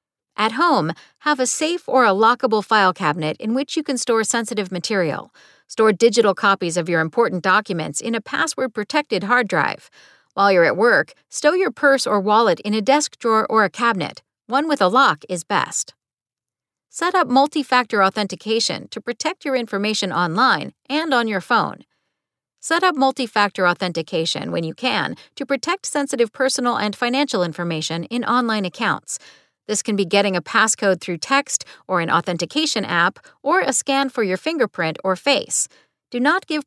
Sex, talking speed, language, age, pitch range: female, 170 wpm, English, 50-69, 195-275 Hz